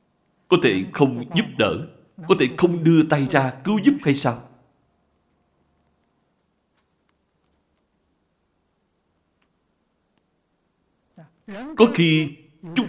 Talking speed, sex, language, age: 85 wpm, male, Vietnamese, 60-79